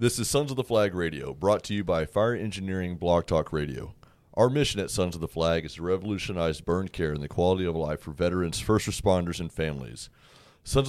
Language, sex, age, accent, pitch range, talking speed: English, male, 30-49, American, 85-105 Hz, 220 wpm